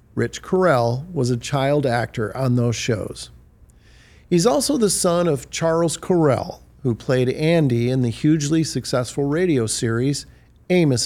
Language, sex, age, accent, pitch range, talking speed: English, male, 50-69, American, 120-160 Hz, 140 wpm